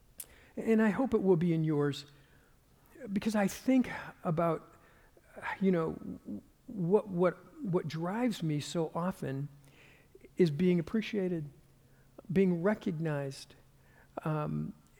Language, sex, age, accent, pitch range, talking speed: English, male, 50-69, American, 180-210 Hz, 110 wpm